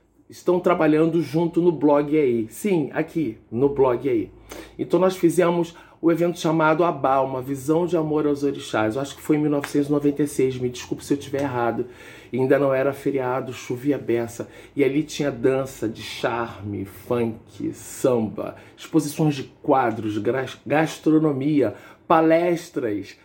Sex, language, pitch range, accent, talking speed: male, Portuguese, 130-160 Hz, Brazilian, 140 wpm